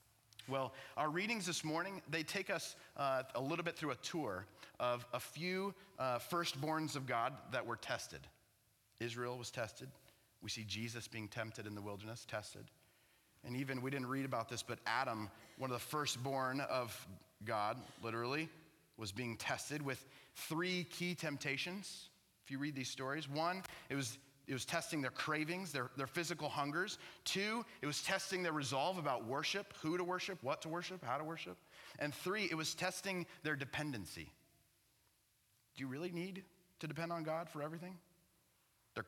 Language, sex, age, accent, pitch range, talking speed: English, male, 30-49, American, 115-165 Hz, 170 wpm